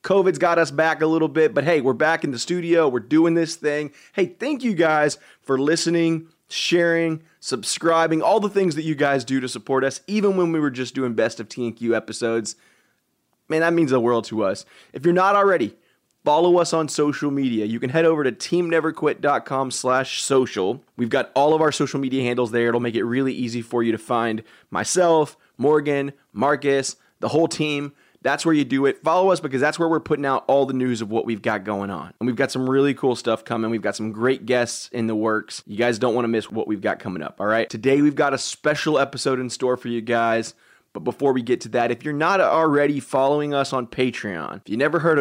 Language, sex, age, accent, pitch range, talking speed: English, male, 20-39, American, 120-160 Hz, 230 wpm